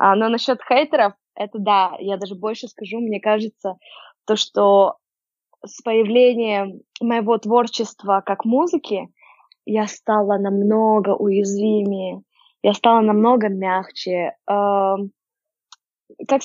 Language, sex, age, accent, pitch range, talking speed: Russian, female, 20-39, native, 195-240 Hz, 110 wpm